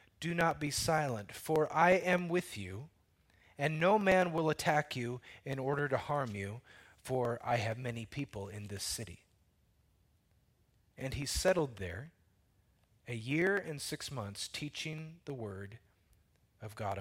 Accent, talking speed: American, 150 wpm